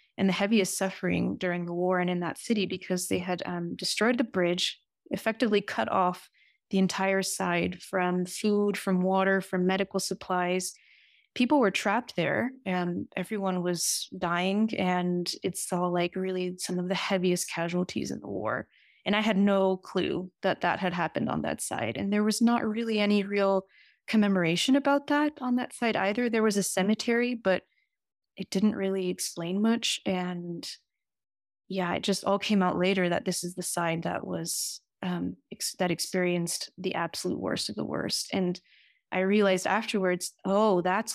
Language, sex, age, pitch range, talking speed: English, female, 20-39, 180-210 Hz, 175 wpm